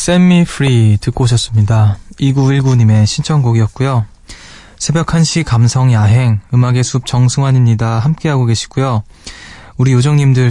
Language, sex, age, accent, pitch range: Korean, male, 20-39, native, 115-145 Hz